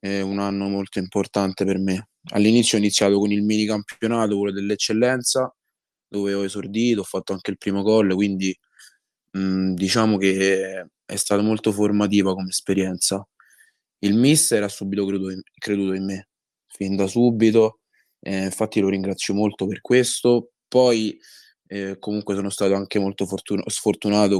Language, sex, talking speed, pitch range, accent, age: Italian, male, 155 wpm, 95-105 Hz, native, 20-39